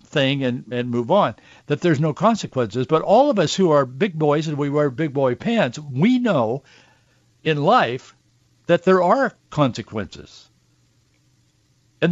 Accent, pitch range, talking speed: American, 145-195 Hz, 160 wpm